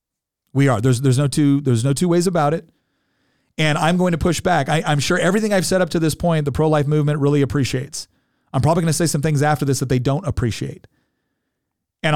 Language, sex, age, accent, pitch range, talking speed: English, male, 40-59, American, 140-175 Hz, 225 wpm